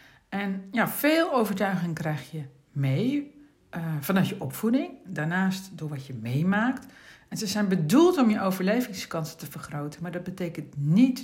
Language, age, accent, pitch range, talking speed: Dutch, 60-79, Dutch, 160-220 Hz, 155 wpm